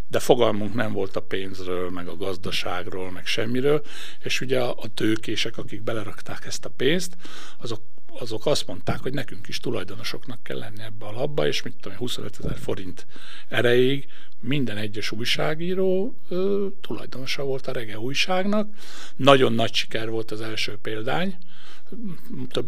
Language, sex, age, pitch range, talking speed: Hungarian, male, 60-79, 110-165 Hz, 150 wpm